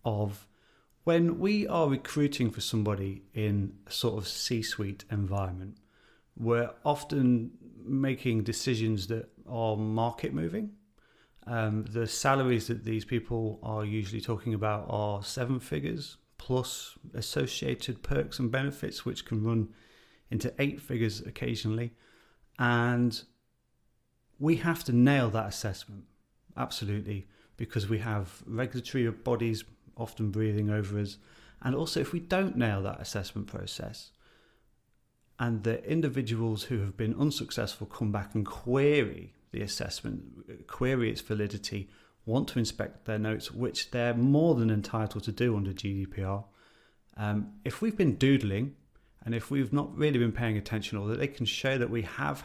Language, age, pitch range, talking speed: English, 30-49, 105-125 Hz, 140 wpm